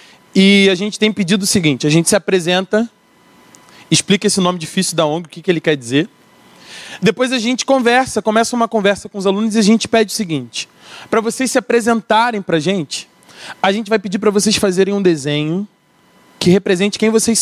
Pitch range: 175-220 Hz